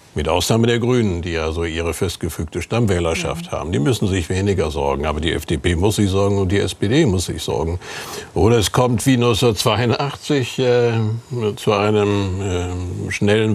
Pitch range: 100-120 Hz